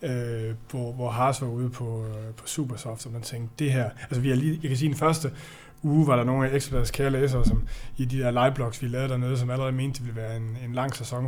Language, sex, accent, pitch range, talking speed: Danish, male, native, 125-145 Hz, 250 wpm